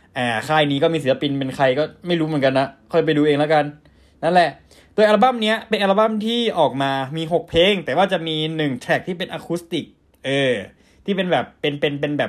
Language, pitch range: Thai, 140-195 Hz